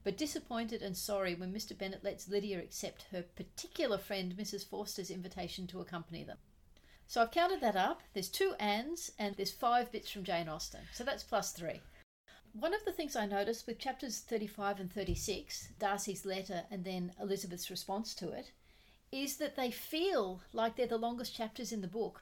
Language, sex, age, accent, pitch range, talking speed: English, female, 40-59, Australian, 190-235 Hz, 185 wpm